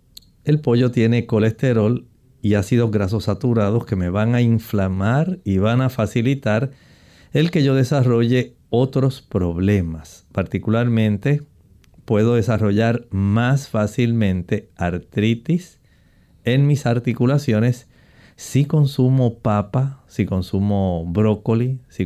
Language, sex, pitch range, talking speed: Spanish, male, 100-130 Hz, 105 wpm